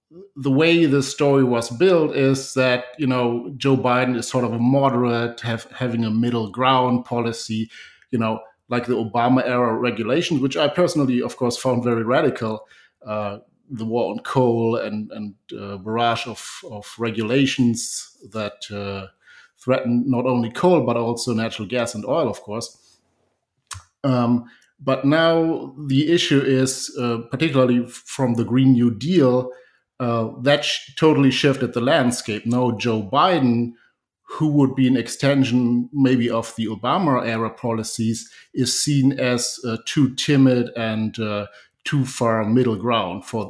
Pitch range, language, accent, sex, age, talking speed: 115-135 Hz, English, German, male, 50-69, 155 wpm